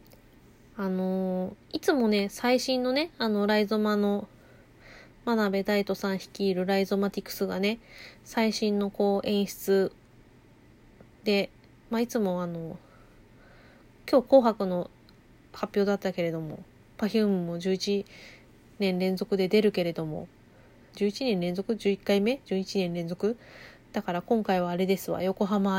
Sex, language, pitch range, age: female, Japanese, 185-215 Hz, 20-39